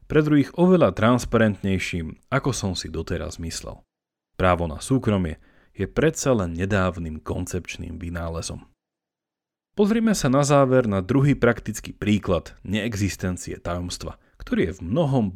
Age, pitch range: 30-49, 85-130 Hz